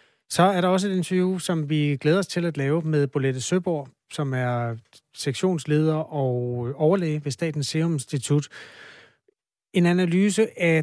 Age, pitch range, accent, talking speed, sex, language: 30-49, 130-165 Hz, native, 155 wpm, male, Danish